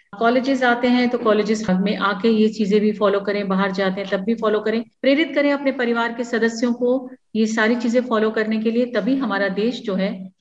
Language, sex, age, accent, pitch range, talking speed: Hindi, female, 50-69, native, 220-260 Hz, 220 wpm